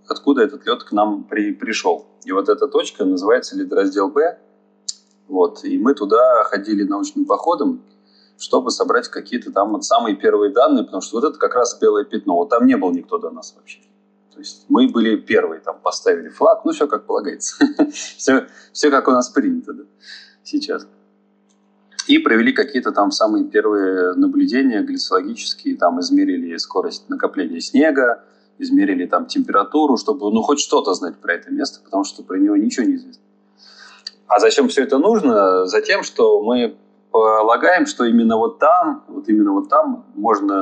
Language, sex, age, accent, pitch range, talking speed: Russian, male, 30-49, native, 220-310 Hz, 160 wpm